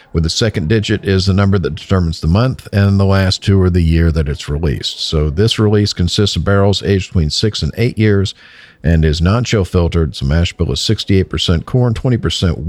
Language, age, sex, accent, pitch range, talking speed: English, 50-69, male, American, 85-100 Hz, 215 wpm